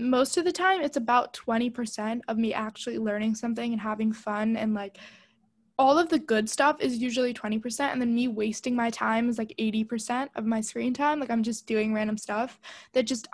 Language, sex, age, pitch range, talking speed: English, female, 10-29, 220-265 Hz, 205 wpm